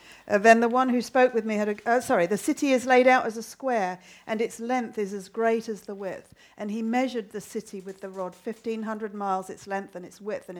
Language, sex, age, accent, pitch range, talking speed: English, female, 50-69, British, 185-225 Hz, 250 wpm